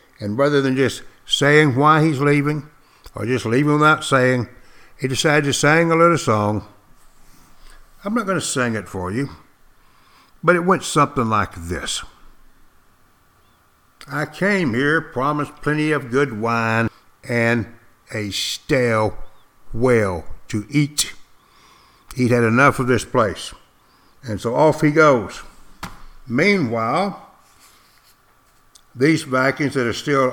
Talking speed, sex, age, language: 130 wpm, male, 60-79, English